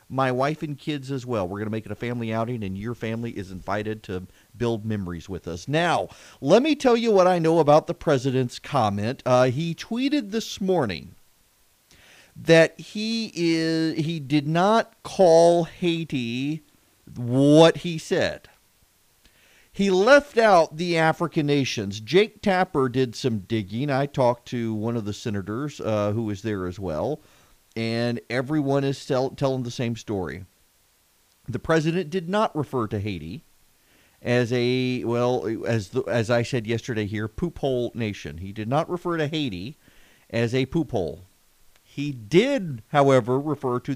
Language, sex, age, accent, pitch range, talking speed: English, male, 40-59, American, 110-160 Hz, 155 wpm